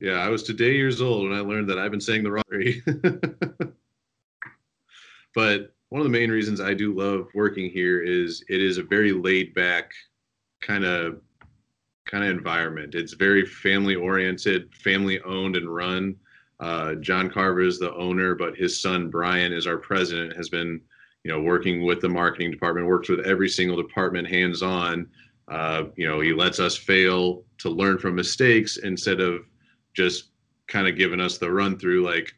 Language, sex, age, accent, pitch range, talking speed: English, male, 30-49, American, 90-105 Hz, 180 wpm